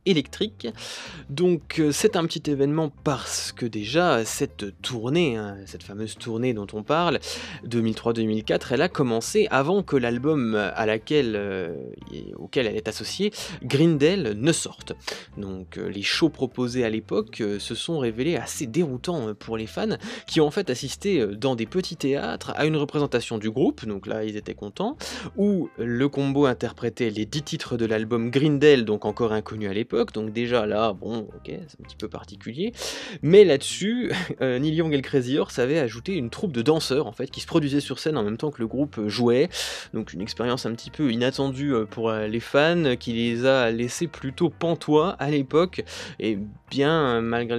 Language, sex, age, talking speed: French, male, 20-39, 180 wpm